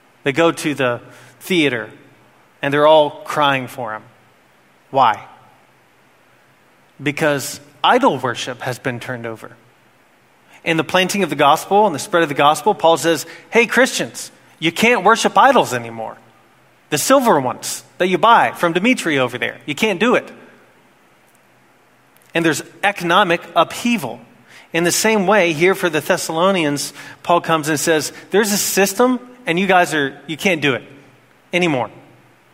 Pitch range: 140-185 Hz